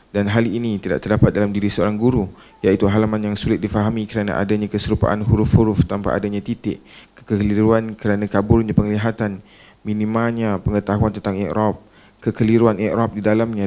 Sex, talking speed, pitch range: male, 145 wpm, 100-115 Hz